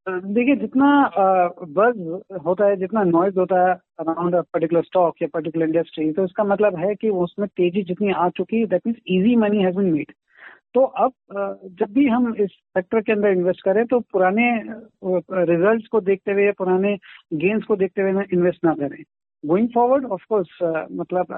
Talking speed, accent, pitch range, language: 170 wpm, native, 180-220 Hz, Hindi